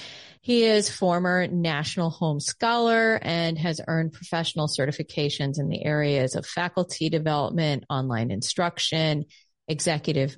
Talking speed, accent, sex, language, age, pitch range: 115 wpm, American, female, English, 40-59, 150-185 Hz